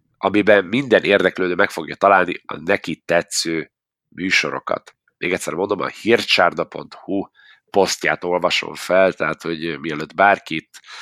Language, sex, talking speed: Hungarian, male, 120 wpm